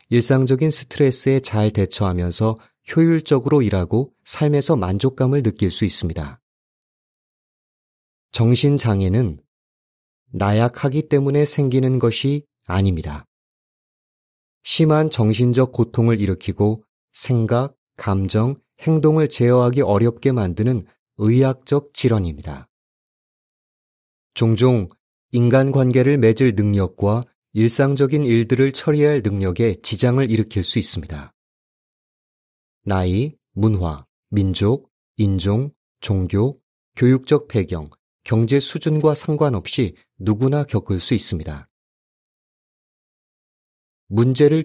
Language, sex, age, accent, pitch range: Korean, male, 30-49, native, 105-135 Hz